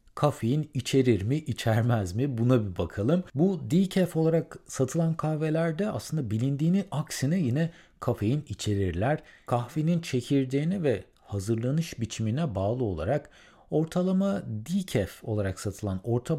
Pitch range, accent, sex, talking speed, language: 100-150 Hz, native, male, 115 wpm, Turkish